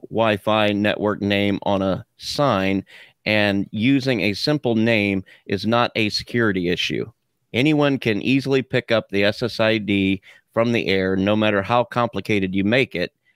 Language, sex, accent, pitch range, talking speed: English, male, American, 100-125 Hz, 150 wpm